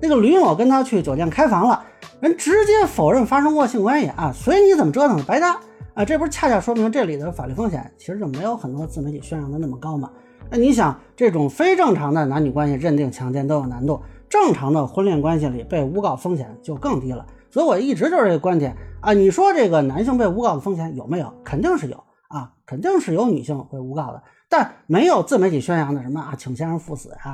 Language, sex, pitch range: Chinese, male, 140-200 Hz